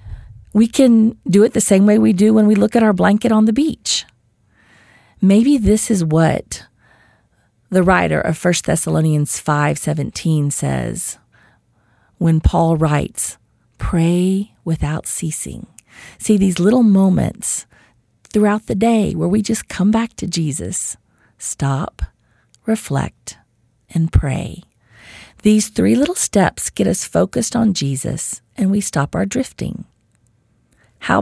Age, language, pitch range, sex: 40-59, English, 140-215 Hz, female